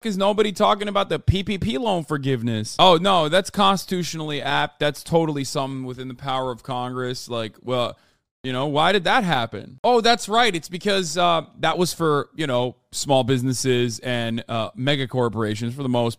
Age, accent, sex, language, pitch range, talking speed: 30-49, American, male, English, 130-205 Hz, 180 wpm